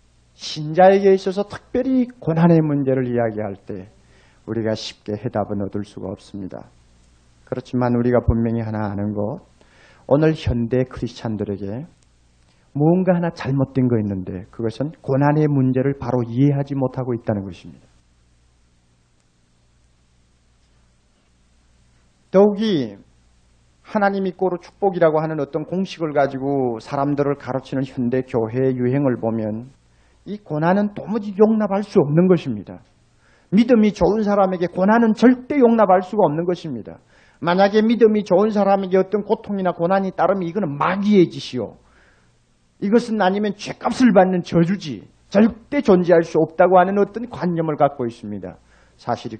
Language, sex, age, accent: Korean, male, 40-59, native